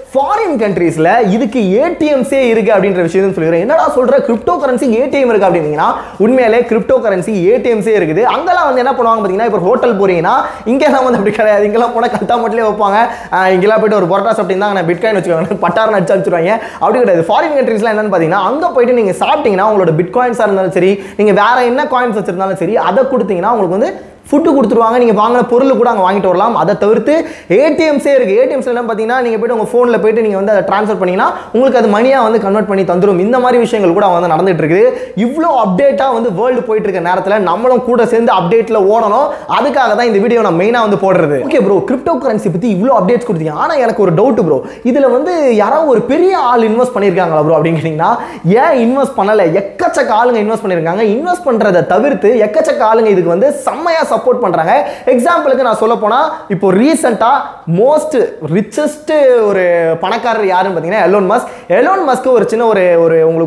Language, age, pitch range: Tamil, 20-39, 195-255 Hz